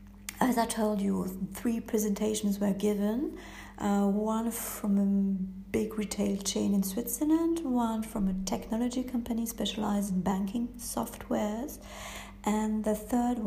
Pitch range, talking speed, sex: 190-225 Hz, 130 wpm, female